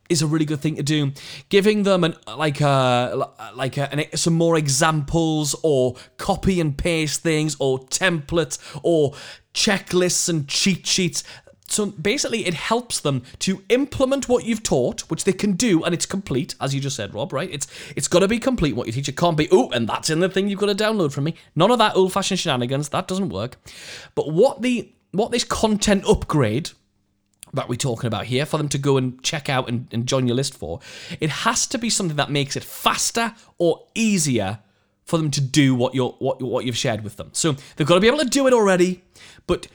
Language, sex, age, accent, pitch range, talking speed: English, male, 20-39, British, 130-185 Hz, 215 wpm